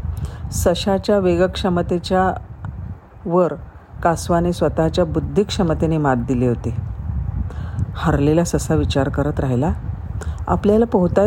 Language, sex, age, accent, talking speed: Marathi, female, 50-69, native, 90 wpm